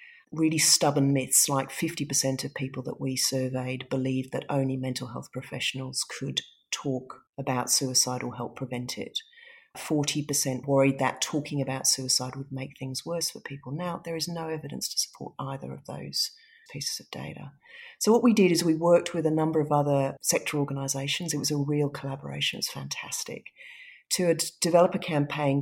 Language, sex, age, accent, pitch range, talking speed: English, female, 40-59, Australian, 135-155 Hz, 175 wpm